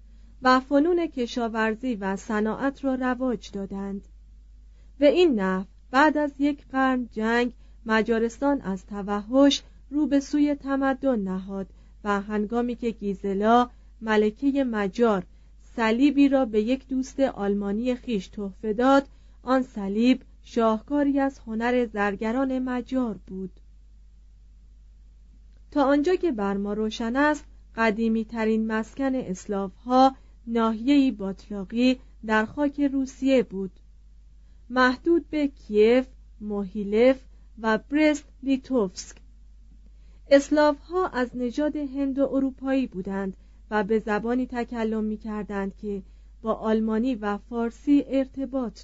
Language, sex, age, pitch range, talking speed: Persian, female, 40-59, 200-270 Hz, 110 wpm